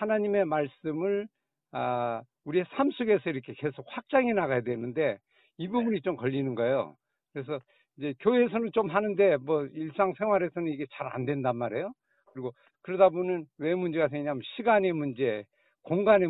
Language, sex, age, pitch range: Korean, male, 60-79, 135-185 Hz